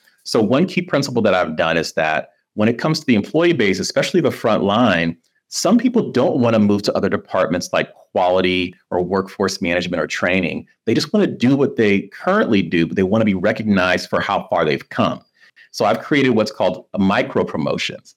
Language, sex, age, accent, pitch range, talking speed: English, male, 40-59, American, 95-125 Hz, 210 wpm